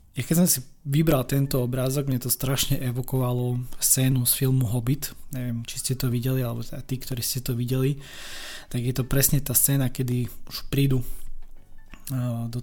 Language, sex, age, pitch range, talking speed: Slovak, male, 20-39, 125-135 Hz, 170 wpm